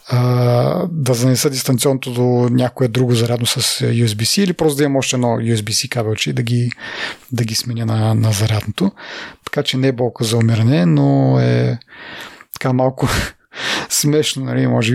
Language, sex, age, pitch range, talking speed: English, male, 30-49, 115-145 Hz, 155 wpm